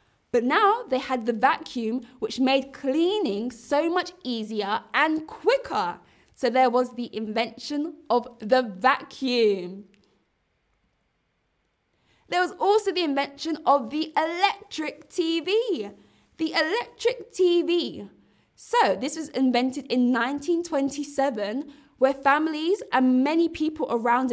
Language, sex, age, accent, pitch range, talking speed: English, female, 20-39, British, 240-320 Hz, 115 wpm